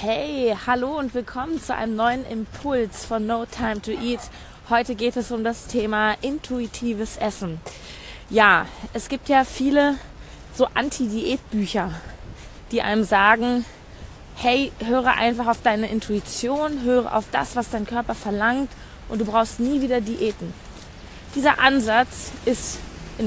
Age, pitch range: 20-39, 220-250 Hz